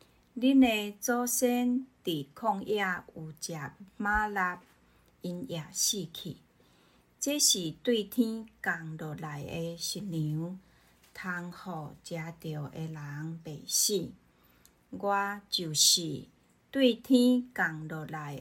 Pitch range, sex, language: 145-200 Hz, female, Chinese